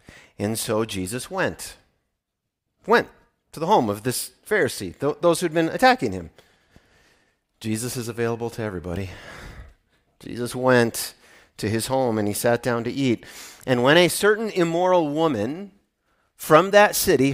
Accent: American